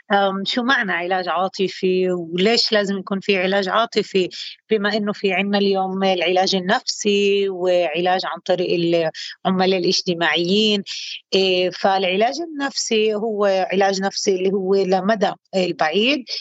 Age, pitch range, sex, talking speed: 30-49, 190-230 Hz, female, 115 wpm